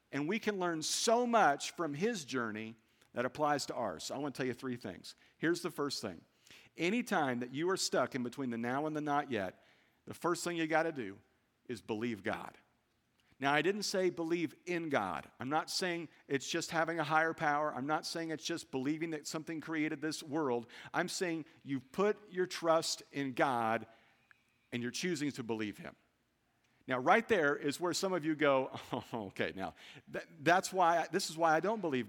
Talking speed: 200 wpm